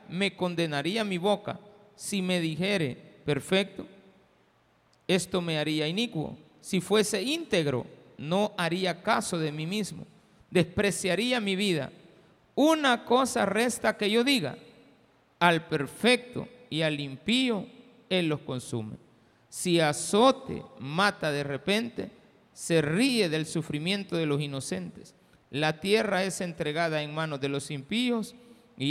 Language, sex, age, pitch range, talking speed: Spanish, male, 50-69, 155-210 Hz, 125 wpm